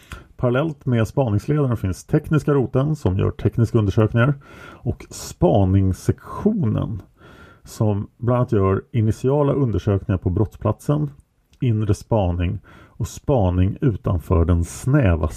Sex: male